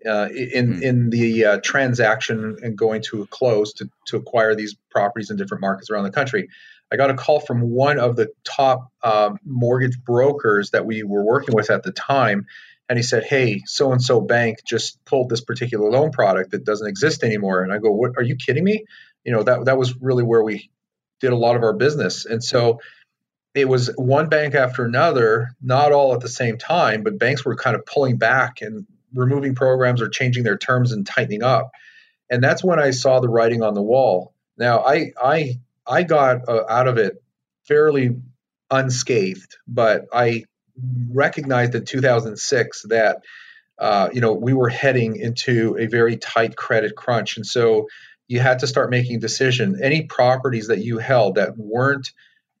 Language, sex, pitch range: English, male, 115-130 Hz